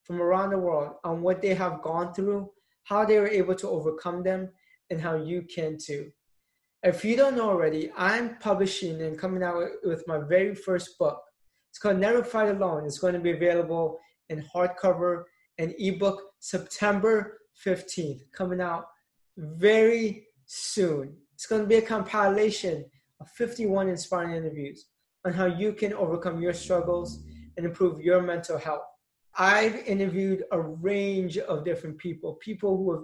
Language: English